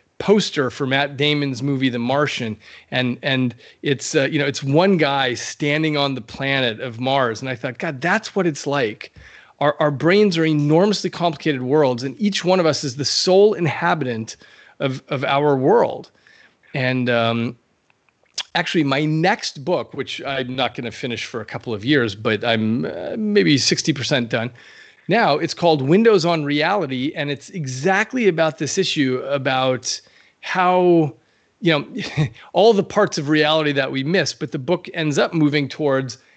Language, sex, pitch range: English, male, 125-165 Hz